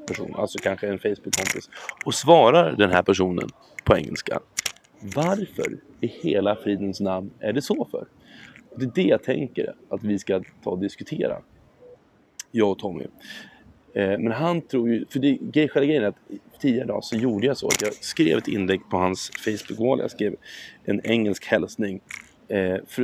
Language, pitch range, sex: Swedish, 100-120 Hz, male